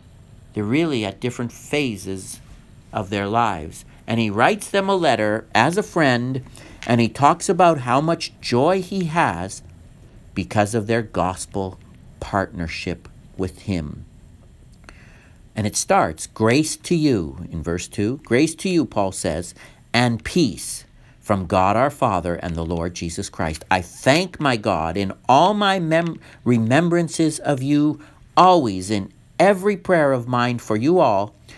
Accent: American